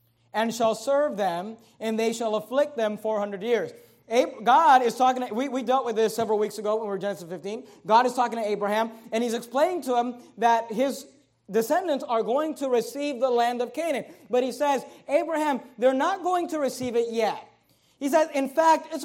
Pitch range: 225-285 Hz